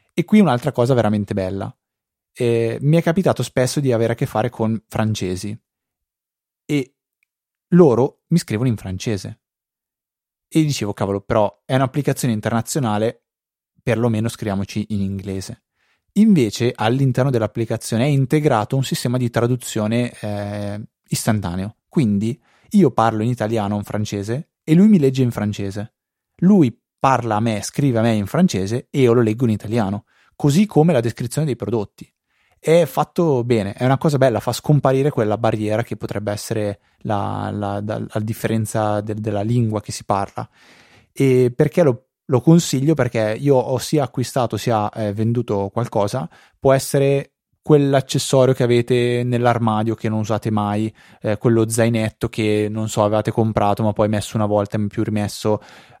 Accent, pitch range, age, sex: native, 105-135 Hz, 20-39, male